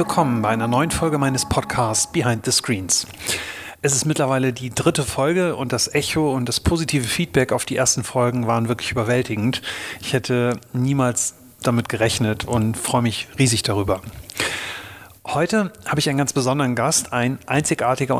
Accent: German